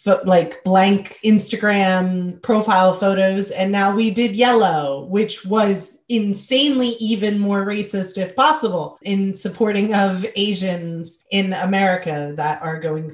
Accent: American